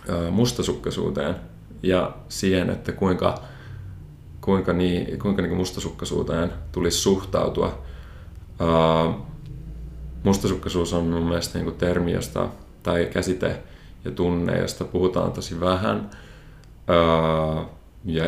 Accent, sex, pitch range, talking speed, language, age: native, male, 80-90 Hz, 100 wpm, Finnish, 30-49